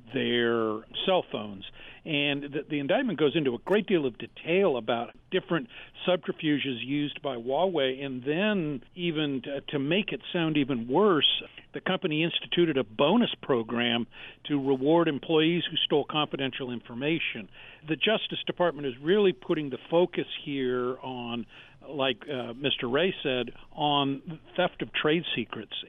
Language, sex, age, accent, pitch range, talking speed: English, male, 50-69, American, 130-165 Hz, 145 wpm